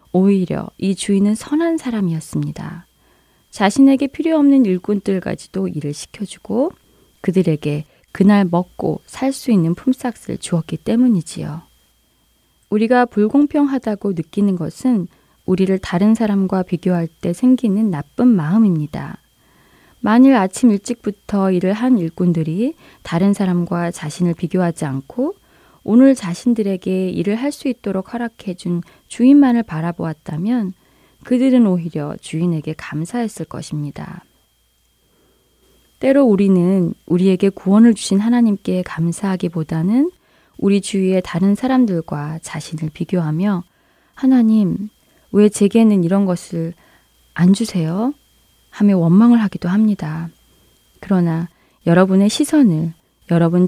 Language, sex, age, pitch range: Korean, female, 20-39, 170-225 Hz